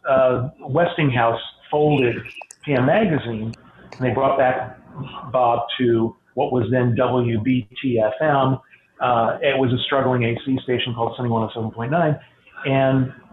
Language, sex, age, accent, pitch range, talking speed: English, male, 50-69, American, 120-150 Hz, 115 wpm